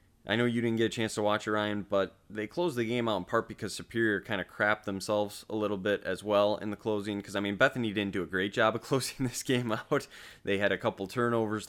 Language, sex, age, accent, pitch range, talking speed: English, male, 20-39, American, 95-110 Hz, 265 wpm